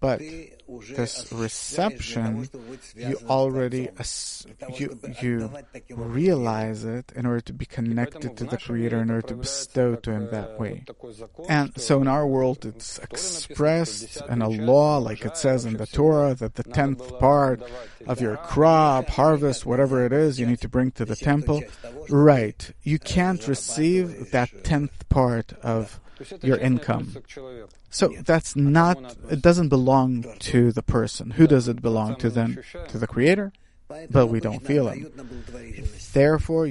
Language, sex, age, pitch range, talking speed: English, male, 50-69, 115-135 Hz, 155 wpm